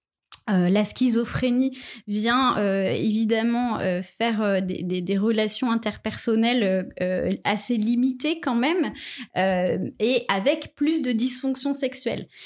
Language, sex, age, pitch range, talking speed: French, female, 20-39, 220-270 Hz, 125 wpm